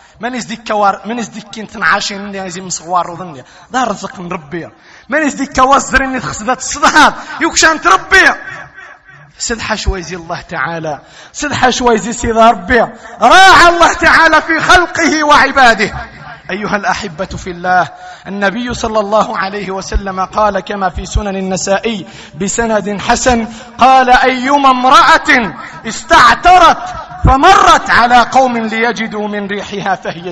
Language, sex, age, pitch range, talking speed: Arabic, male, 30-49, 170-240 Hz, 125 wpm